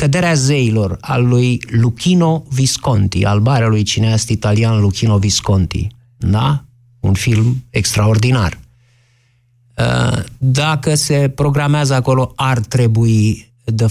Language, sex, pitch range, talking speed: Romanian, male, 110-135 Hz, 100 wpm